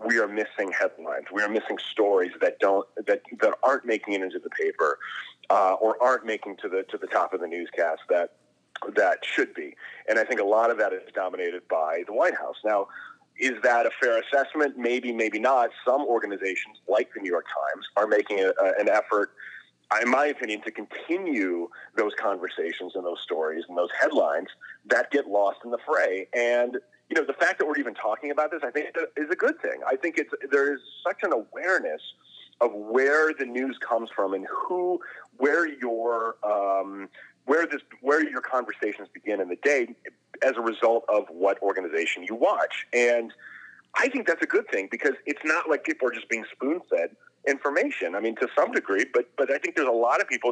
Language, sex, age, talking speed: English, male, 30-49, 205 wpm